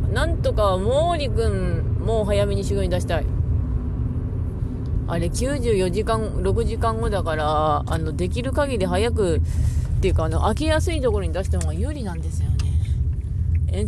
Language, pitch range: Japanese, 90-115 Hz